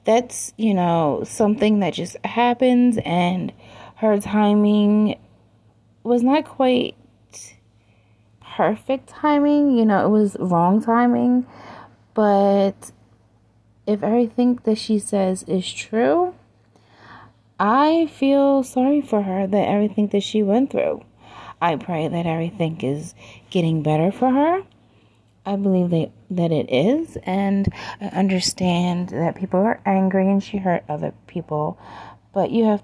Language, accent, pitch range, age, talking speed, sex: English, American, 170-220 Hz, 30-49, 125 wpm, female